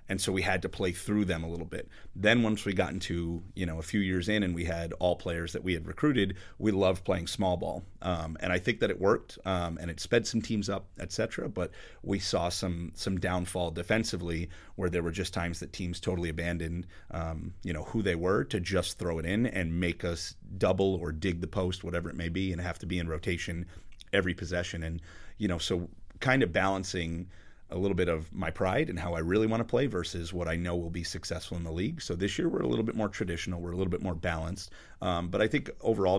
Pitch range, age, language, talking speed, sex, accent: 85-95 Hz, 30-49, English, 245 wpm, male, American